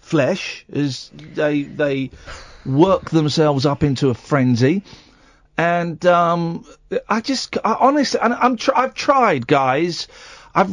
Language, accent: English, British